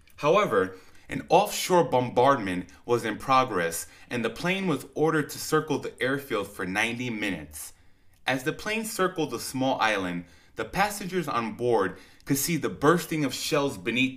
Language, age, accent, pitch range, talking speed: English, 20-39, American, 95-150 Hz, 155 wpm